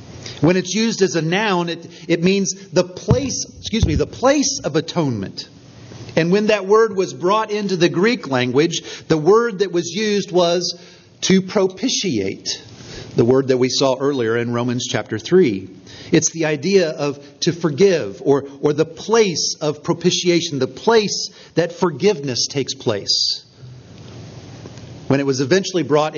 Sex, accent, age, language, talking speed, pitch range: male, American, 40-59, English, 155 wpm, 135-195 Hz